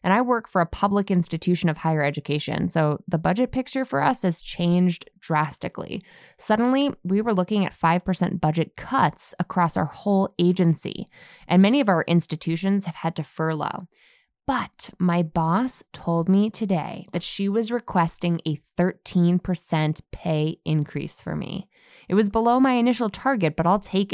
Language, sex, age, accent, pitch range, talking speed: English, female, 20-39, American, 165-220 Hz, 160 wpm